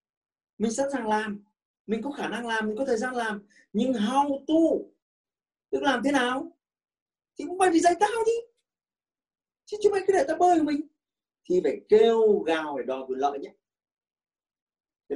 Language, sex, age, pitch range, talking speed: Vietnamese, male, 30-49, 195-305 Hz, 180 wpm